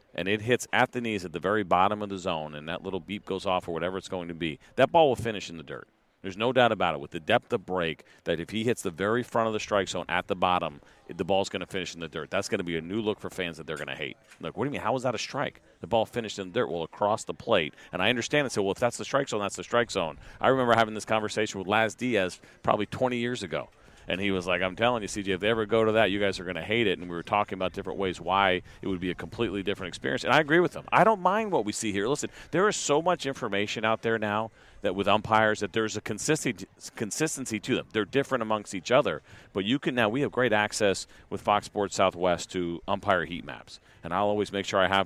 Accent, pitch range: American, 90-110 Hz